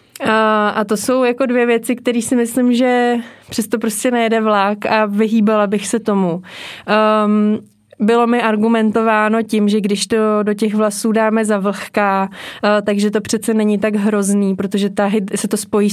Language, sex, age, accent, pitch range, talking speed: Czech, female, 20-39, native, 195-215 Hz, 170 wpm